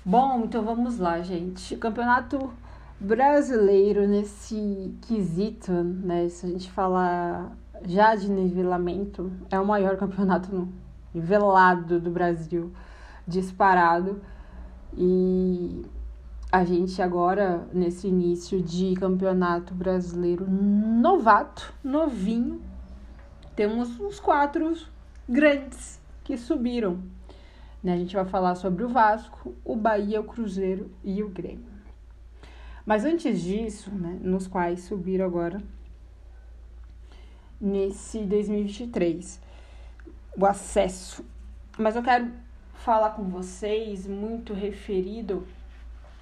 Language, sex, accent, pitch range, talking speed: Portuguese, female, Brazilian, 175-215 Hz, 100 wpm